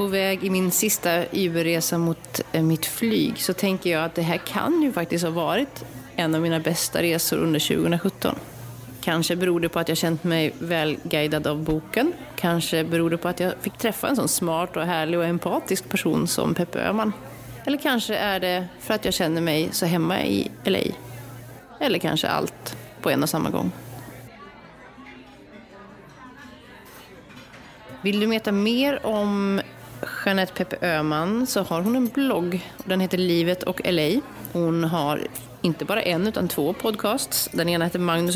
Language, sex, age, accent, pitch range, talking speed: English, female, 30-49, Swedish, 165-195 Hz, 170 wpm